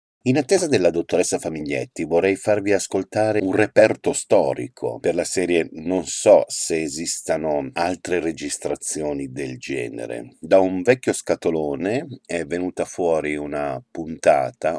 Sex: male